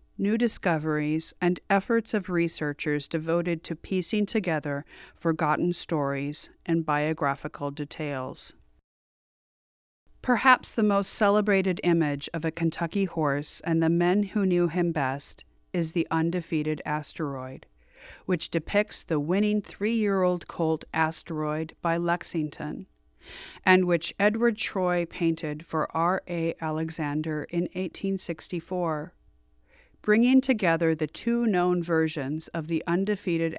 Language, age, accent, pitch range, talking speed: English, 40-59, American, 155-190 Hz, 115 wpm